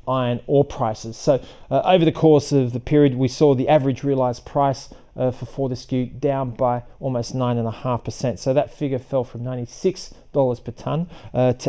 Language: English